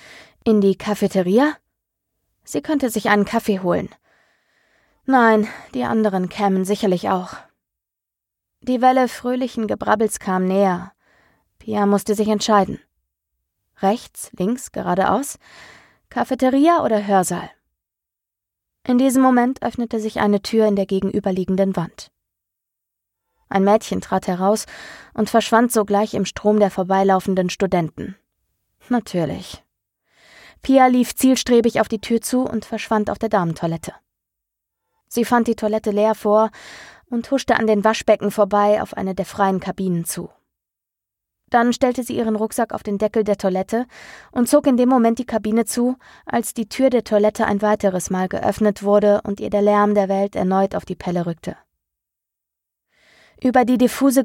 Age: 20-39